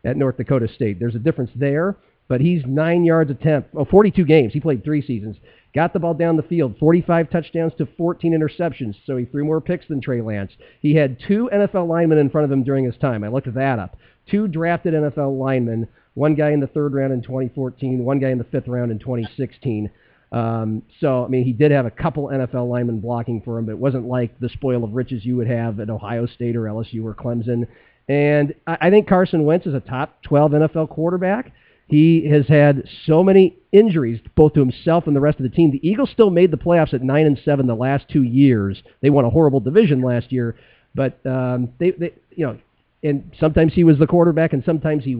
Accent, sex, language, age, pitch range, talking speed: American, male, English, 40-59, 125-160 Hz, 225 wpm